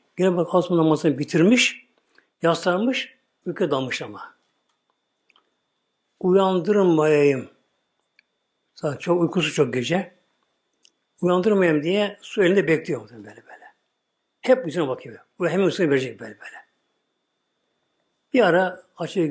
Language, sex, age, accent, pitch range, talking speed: Turkish, male, 60-79, native, 150-185 Hz, 110 wpm